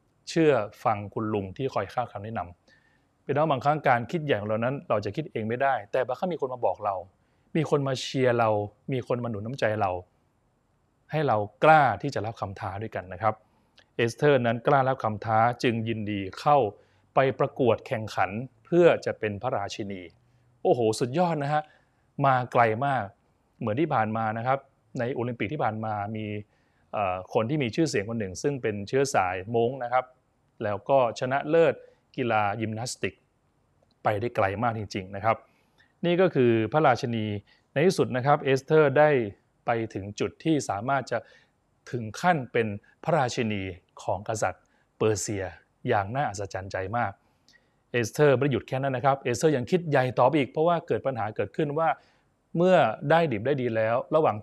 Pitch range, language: 110-140 Hz, Thai